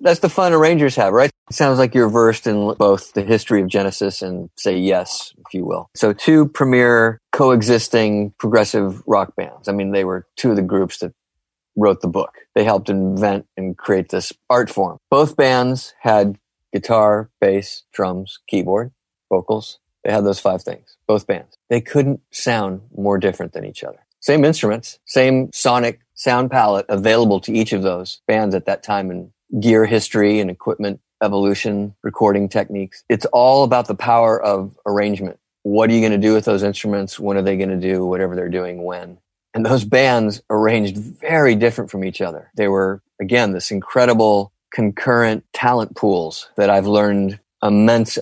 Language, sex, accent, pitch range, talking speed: English, male, American, 100-115 Hz, 175 wpm